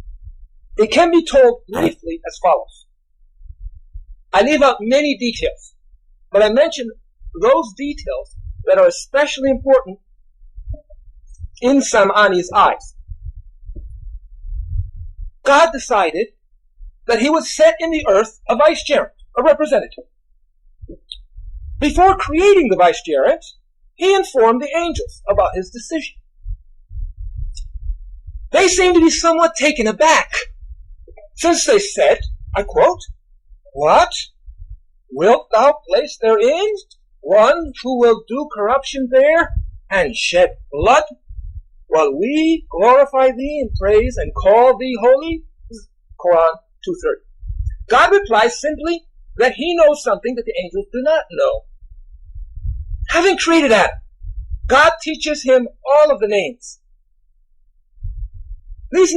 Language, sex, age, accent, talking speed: English, male, 50-69, American, 115 wpm